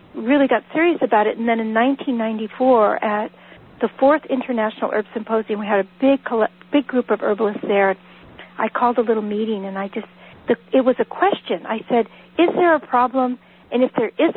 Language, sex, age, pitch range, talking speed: English, female, 60-79, 210-255 Hz, 195 wpm